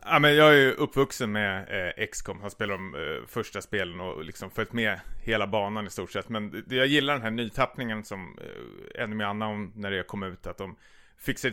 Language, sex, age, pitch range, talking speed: Swedish, male, 30-49, 105-135 Hz, 235 wpm